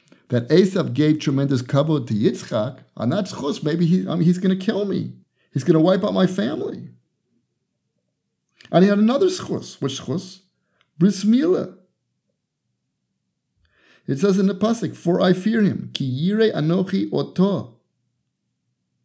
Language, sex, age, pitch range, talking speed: English, male, 50-69, 140-200 Hz, 130 wpm